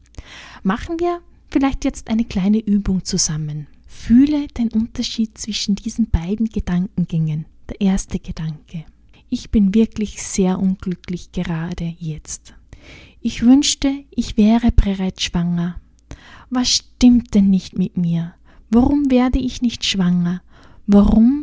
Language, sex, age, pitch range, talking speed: German, female, 20-39, 185-240 Hz, 120 wpm